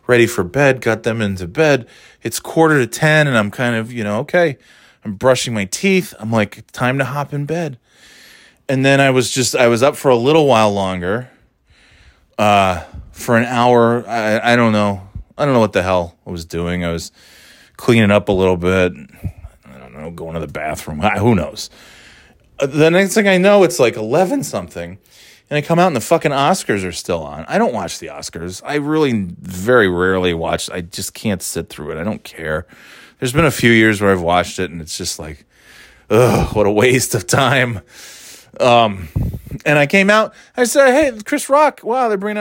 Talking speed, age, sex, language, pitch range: 205 wpm, 30-49, male, English, 100-165 Hz